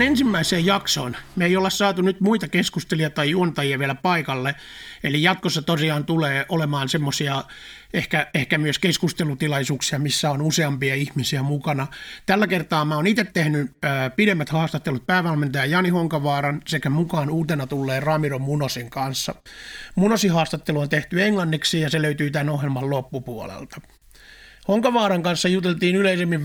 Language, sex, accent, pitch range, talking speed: Finnish, male, native, 140-175 Hz, 140 wpm